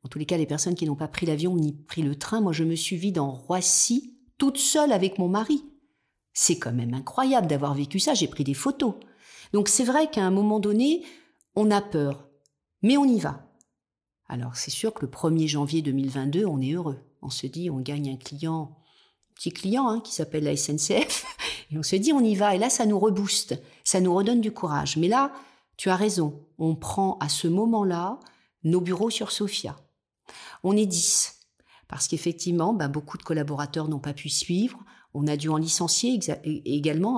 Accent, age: French, 50-69